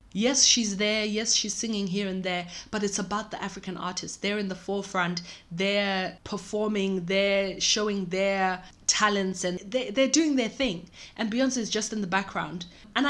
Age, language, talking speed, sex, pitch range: 20-39, English, 180 wpm, female, 180-215 Hz